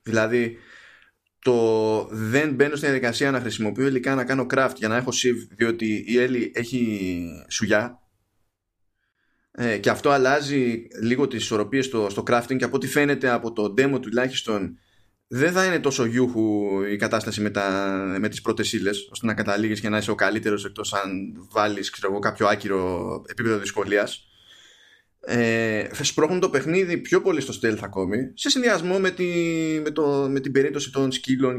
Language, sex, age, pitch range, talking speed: Greek, male, 20-39, 110-140 Hz, 160 wpm